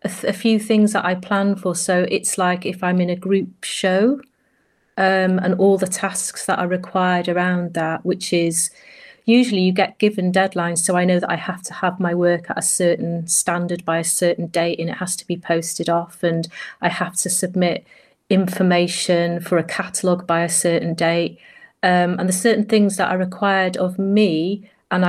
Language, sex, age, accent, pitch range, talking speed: English, female, 30-49, British, 175-195 Hz, 200 wpm